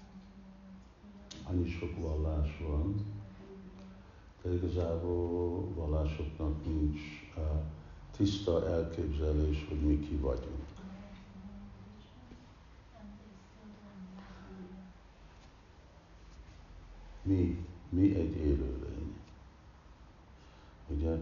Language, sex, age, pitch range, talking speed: Hungarian, male, 60-79, 80-95 Hz, 55 wpm